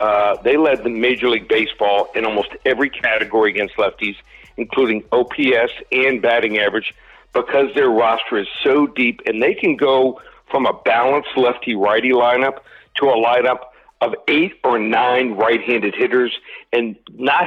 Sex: male